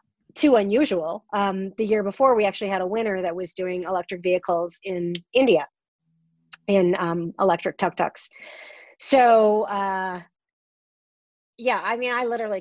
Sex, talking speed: female, 140 wpm